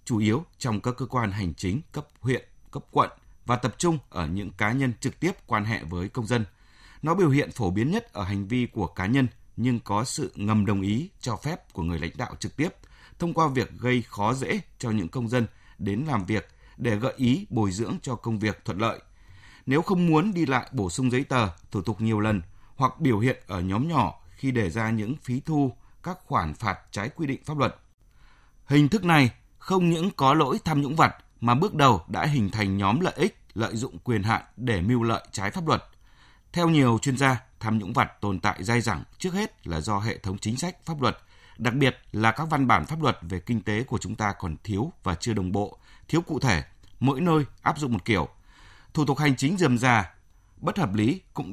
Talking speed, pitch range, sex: 230 wpm, 100-135 Hz, male